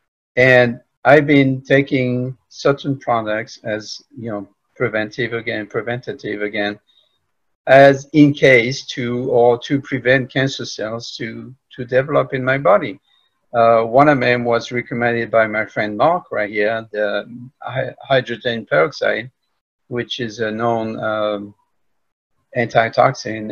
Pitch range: 115-130 Hz